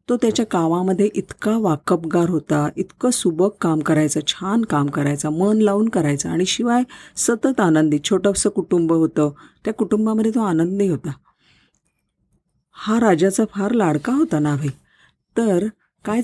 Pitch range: 165-215 Hz